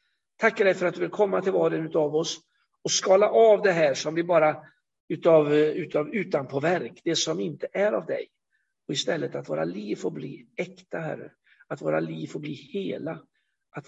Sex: male